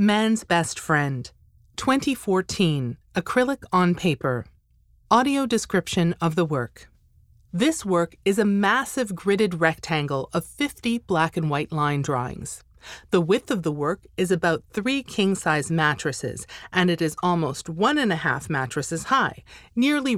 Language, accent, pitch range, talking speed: English, American, 155-225 Hz, 140 wpm